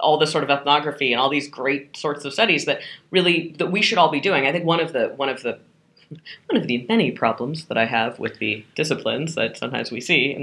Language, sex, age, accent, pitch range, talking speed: English, female, 30-49, American, 150-215 Hz, 255 wpm